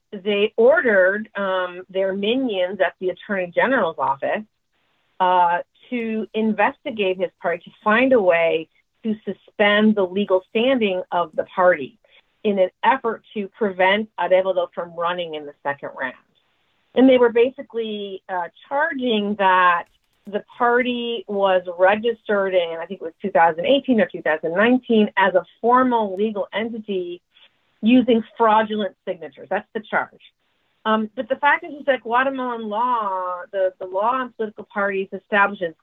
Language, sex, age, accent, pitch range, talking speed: English, female, 40-59, American, 185-240 Hz, 140 wpm